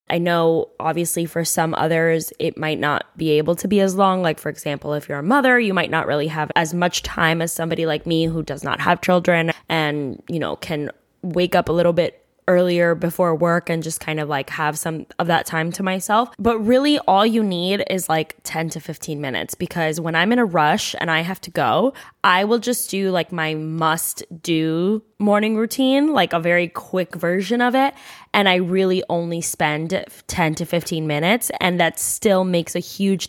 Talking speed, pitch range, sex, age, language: 210 wpm, 160-200 Hz, female, 10-29, English